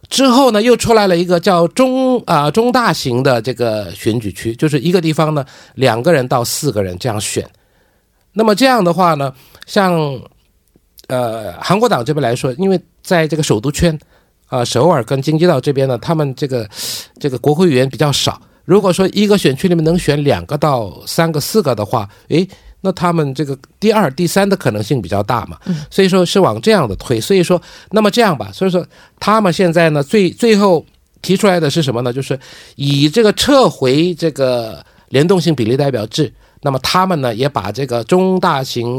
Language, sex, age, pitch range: Korean, male, 50-69, 125-180 Hz